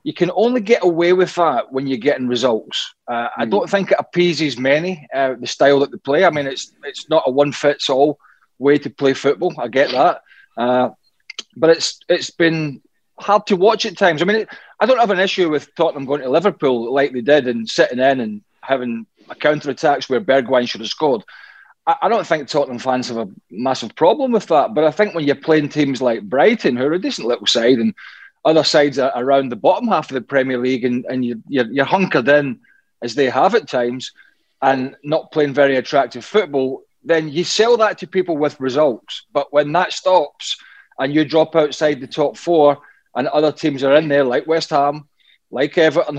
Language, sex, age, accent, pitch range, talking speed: English, male, 30-49, British, 135-180 Hz, 210 wpm